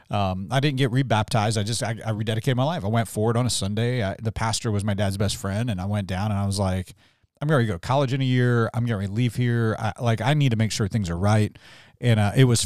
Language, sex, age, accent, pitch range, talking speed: English, male, 40-59, American, 105-135 Hz, 295 wpm